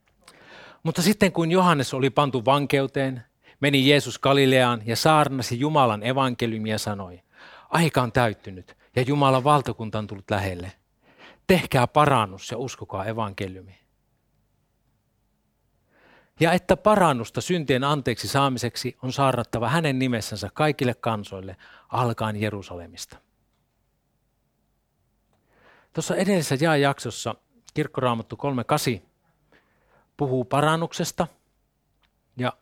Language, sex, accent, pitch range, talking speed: Finnish, male, native, 110-145 Hz, 100 wpm